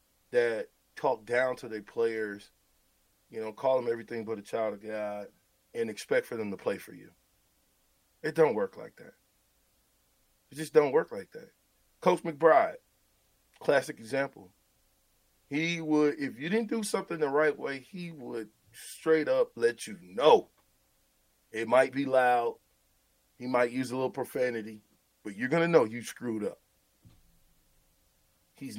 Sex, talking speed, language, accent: male, 155 wpm, English, American